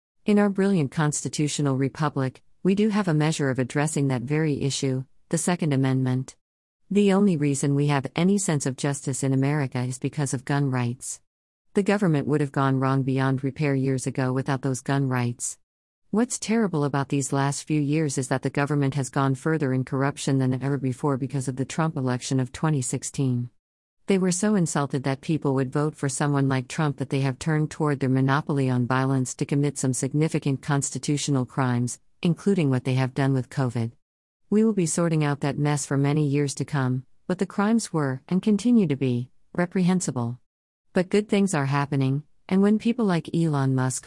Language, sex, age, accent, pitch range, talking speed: English, female, 50-69, American, 130-160 Hz, 190 wpm